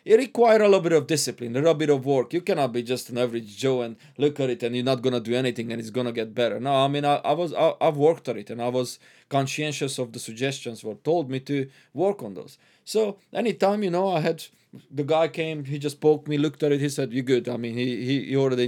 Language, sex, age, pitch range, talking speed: English, male, 20-39, 120-150 Hz, 280 wpm